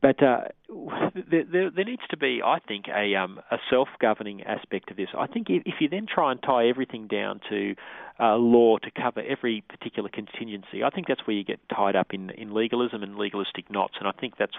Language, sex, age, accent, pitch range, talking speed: English, male, 40-59, Australian, 100-115 Hz, 215 wpm